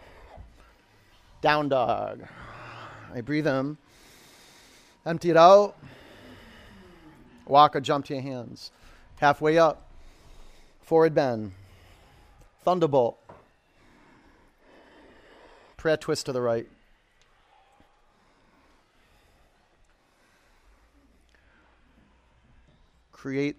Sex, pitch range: male, 130-170 Hz